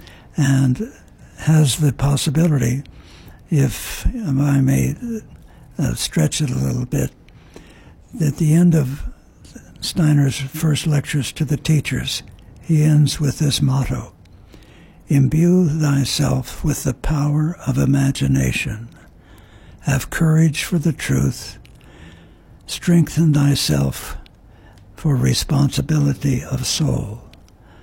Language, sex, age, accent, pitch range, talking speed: English, male, 60-79, American, 110-150 Hz, 95 wpm